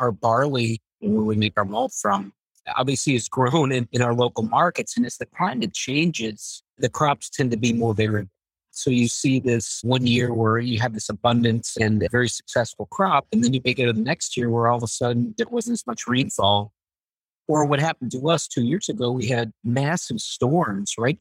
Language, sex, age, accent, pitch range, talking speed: English, male, 50-69, American, 115-145 Hz, 215 wpm